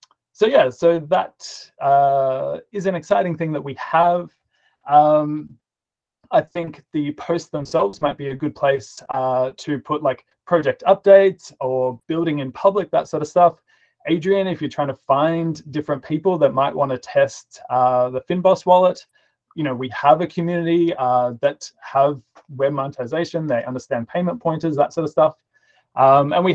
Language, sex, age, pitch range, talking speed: English, male, 20-39, 135-170 Hz, 170 wpm